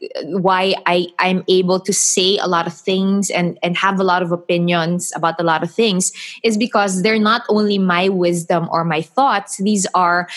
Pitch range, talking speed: 185-230 Hz, 190 wpm